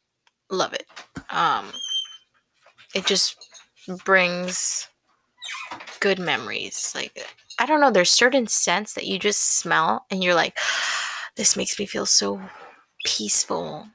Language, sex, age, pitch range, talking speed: English, female, 20-39, 180-210 Hz, 120 wpm